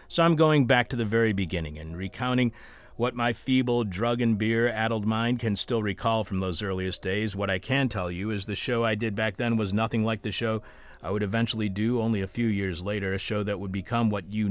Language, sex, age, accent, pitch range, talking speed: English, male, 40-59, American, 100-125 Hz, 230 wpm